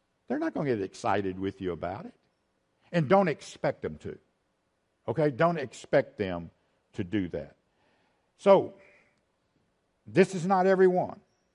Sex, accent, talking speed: male, American, 140 wpm